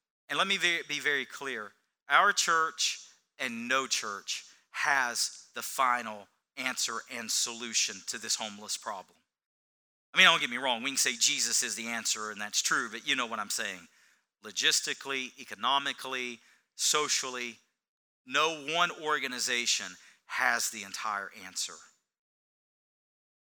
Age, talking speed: 40-59, 135 wpm